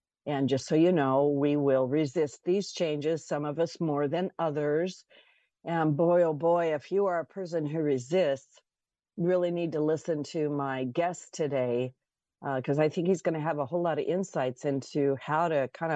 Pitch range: 145-175 Hz